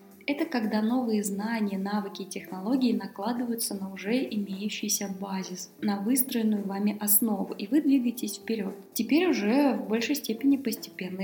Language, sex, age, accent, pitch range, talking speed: Russian, female, 20-39, native, 200-245 Hz, 140 wpm